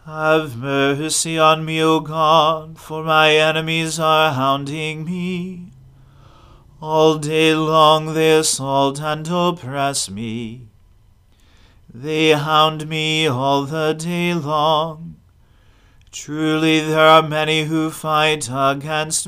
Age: 40-59